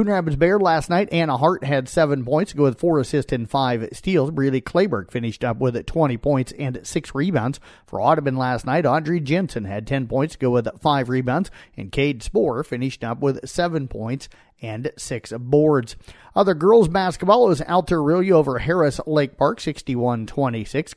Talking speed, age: 180 wpm, 40-59